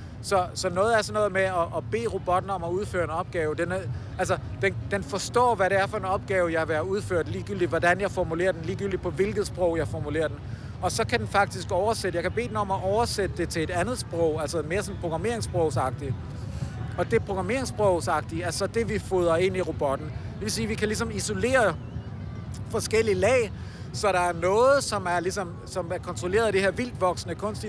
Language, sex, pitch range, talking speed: Danish, male, 130-190 Hz, 215 wpm